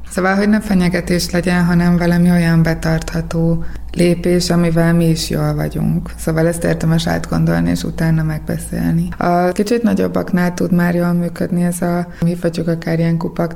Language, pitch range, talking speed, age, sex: Hungarian, 165-190 Hz, 160 wpm, 20-39, female